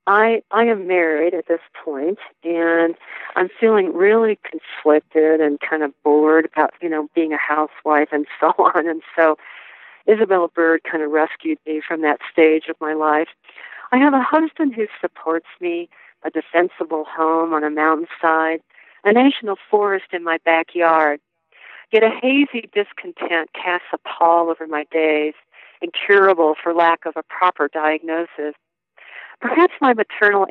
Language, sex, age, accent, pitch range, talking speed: English, female, 50-69, American, 155-195 Hz, 155 wpm